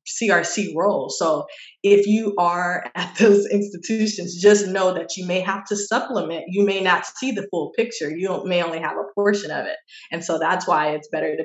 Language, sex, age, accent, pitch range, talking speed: English, female, 20-39, American, 165-205 Hz, 205 wpm